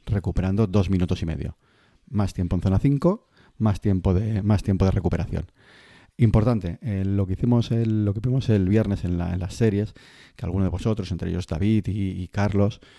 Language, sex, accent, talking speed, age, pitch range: Spanish, male, Spanish, 190 wpm, 30-49, 90-105 Hz